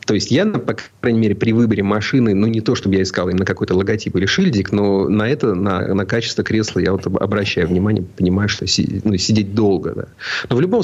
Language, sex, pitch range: Russian, male, 90-110 Hz